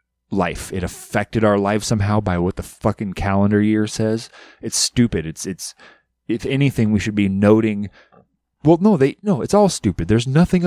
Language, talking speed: English, 180 wpm